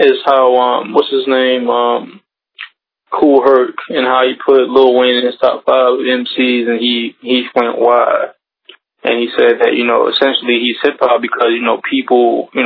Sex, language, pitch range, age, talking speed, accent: male, English, 120-140 Hz, 20-39, 185 wpm, American